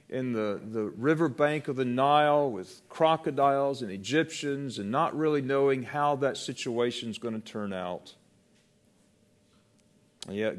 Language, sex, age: English, male, 50-69